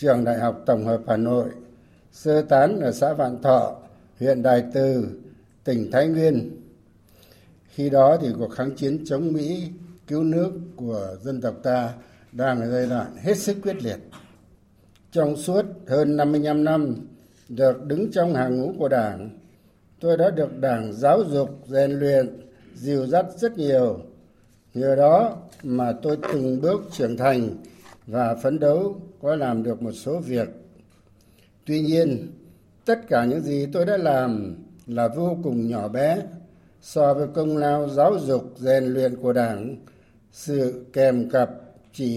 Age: 60-79